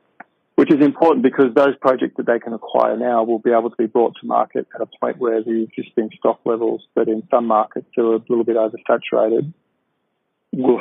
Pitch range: 110-120 Hz